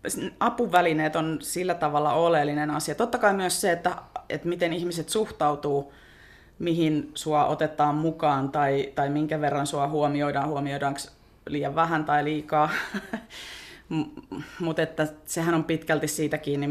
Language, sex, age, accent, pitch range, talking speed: Finnish, female, 30-49, native, 145-165 Hz, 130 wpm